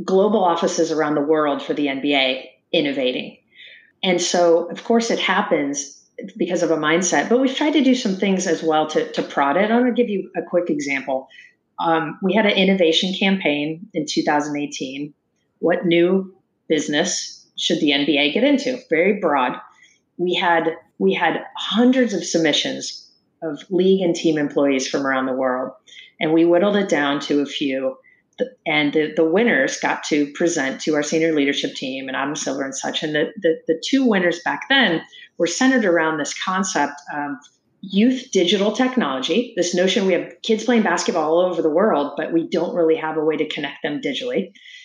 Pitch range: 150-190 Hz